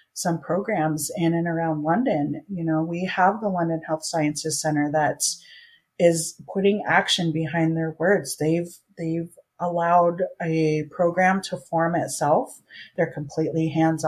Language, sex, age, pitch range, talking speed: English, female, 30-49, 155-175 Hz, 140 wpm